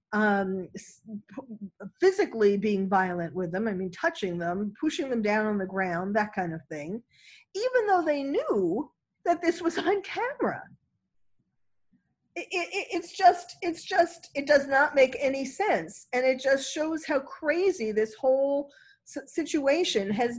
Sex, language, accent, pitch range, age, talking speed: female, English, American, 200-290 Hz, 50-69, 145 wpm